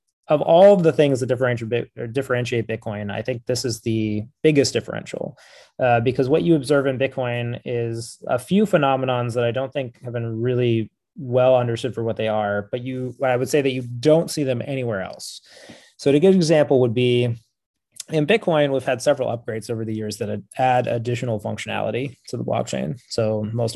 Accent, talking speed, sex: American, 190 wpm, male